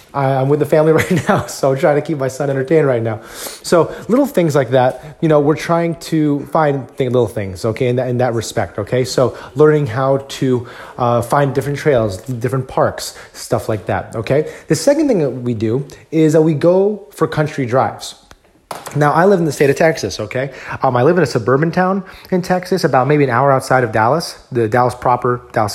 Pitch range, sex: 125-160 Hz, male